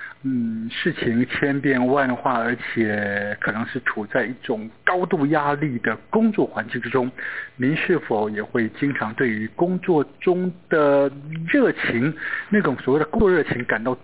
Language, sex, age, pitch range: Chinese, male, 60-79, 120-155 Hz